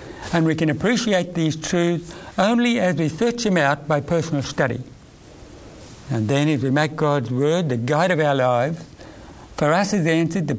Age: 60-79